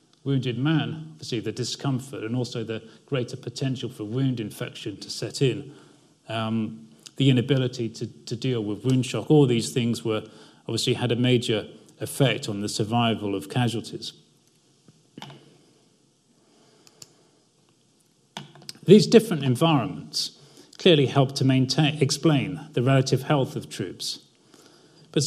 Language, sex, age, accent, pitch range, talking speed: English, male, 40-59, British, 115-145 Hz, 125 wpm